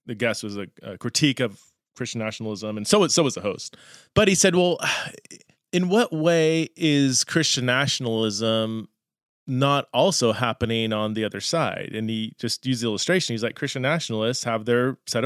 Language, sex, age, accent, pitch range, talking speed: English, male, 30-49, American, 115-160 Hz, 175 wpm